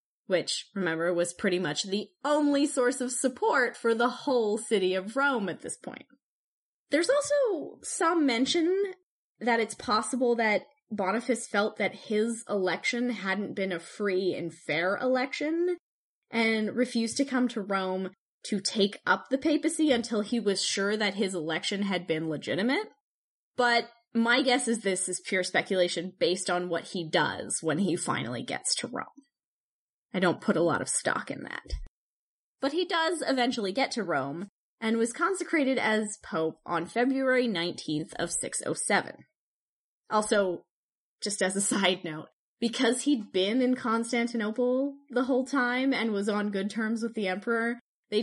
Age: 10-29